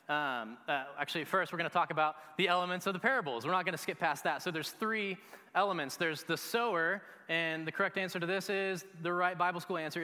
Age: 20-39